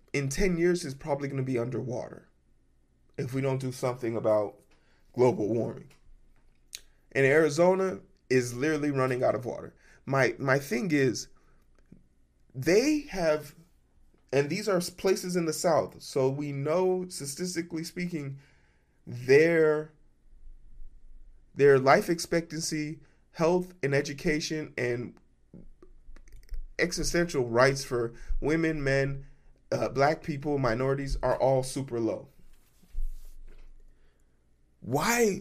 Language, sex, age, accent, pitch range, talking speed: English, male, 20-39, American, 125-165 Hz, 110 wpm